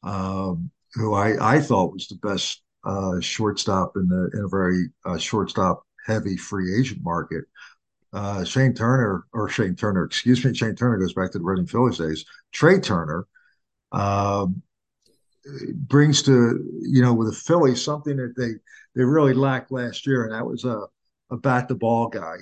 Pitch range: 100-130 Hz